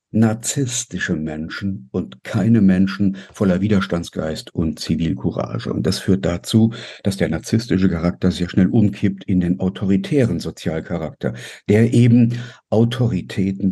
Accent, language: German, German